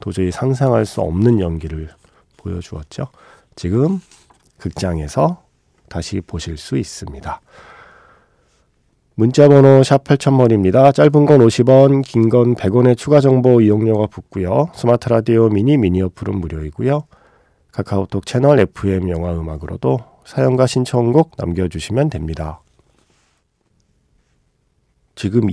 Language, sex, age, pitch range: Korean, male, 40-59, 85-125 Hz